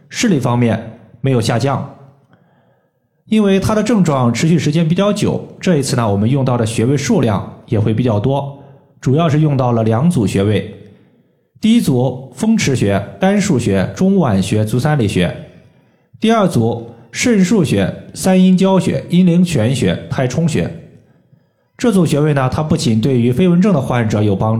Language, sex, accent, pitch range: Chinese, male, native, 115-175 Hz